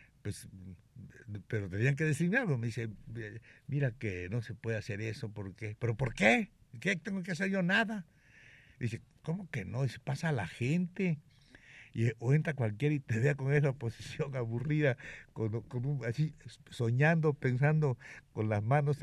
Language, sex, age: Spanish, male, 60-79